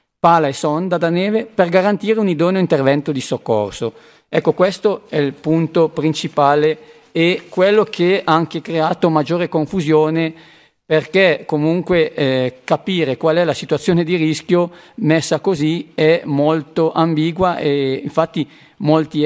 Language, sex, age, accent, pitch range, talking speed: Italian, male, 50-69, native, 140-170 Hz, 135 wpm